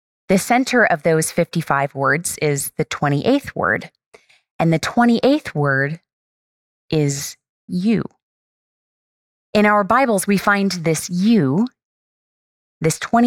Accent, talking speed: American, 110 wpm